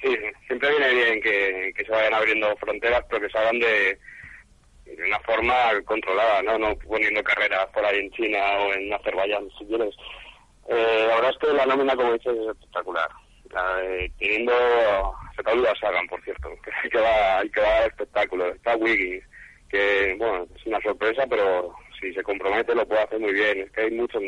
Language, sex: Spanish, male